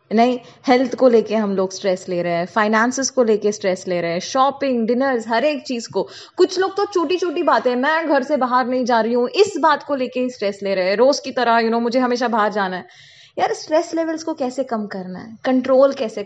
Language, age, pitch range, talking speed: Hindi, 20-39, 220-305 Hz, 245 wpm